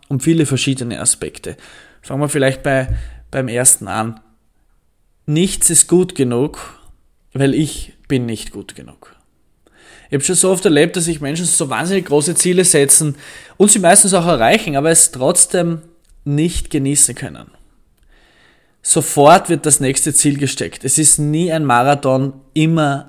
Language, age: German, 20-39